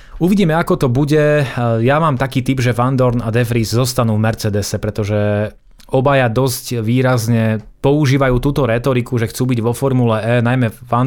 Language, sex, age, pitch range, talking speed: Slovak, male, 30-49, 115-135 Hz, 170 wpm